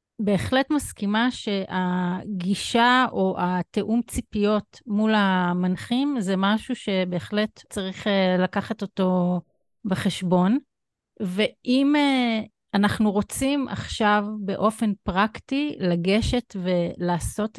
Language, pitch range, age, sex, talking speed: Hebrew, 185-230 Hz, 30-49, female, 80 wpm